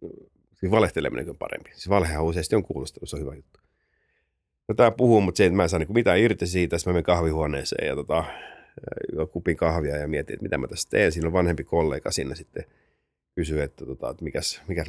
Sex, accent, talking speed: male, native, 205 wpm